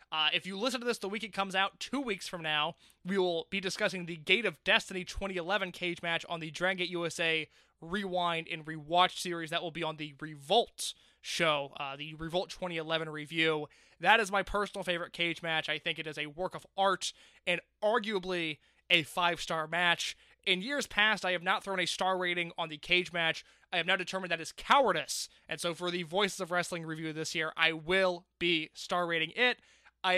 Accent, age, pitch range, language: American, 20-39, 160-190 Hz, English